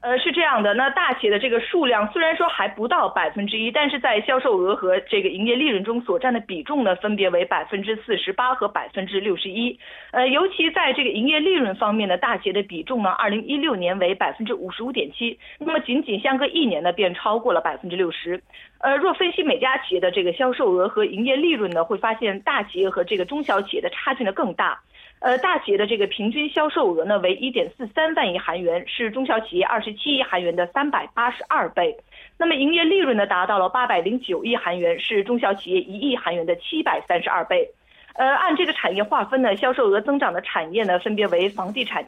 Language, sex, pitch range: Korean, female, 195-275 Hz